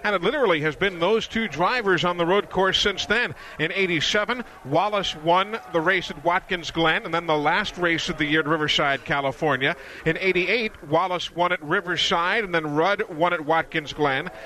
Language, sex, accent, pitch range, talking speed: English, male, American, 160-200 Hz, 195 wpm